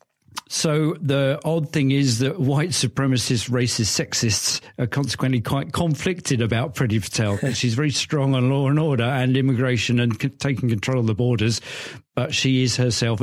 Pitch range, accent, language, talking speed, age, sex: 110-135 Hz, British, English, 170 wpm, 50-69, male